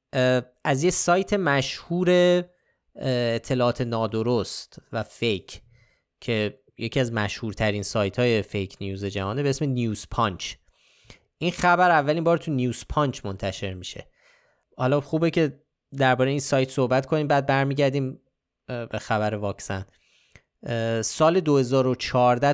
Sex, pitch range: male, 110-140 Hz